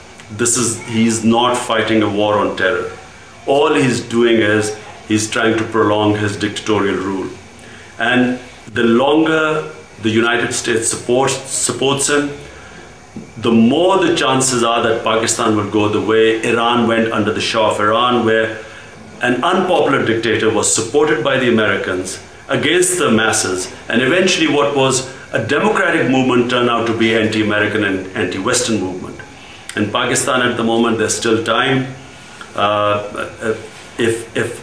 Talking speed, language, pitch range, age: 145 wpm, English, 110-130 Hz, 50-69